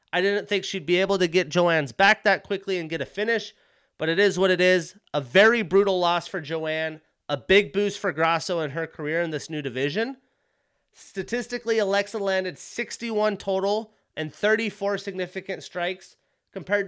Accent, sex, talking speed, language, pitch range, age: American, male, 180 wpm, English, 170-205 Hz, 30-49